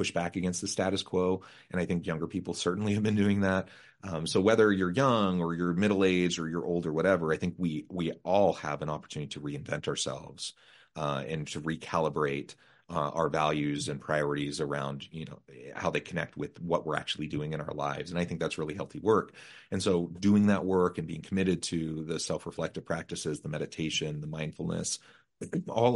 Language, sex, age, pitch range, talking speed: English, male, 30-49, 75-95 Hz, 200 wpm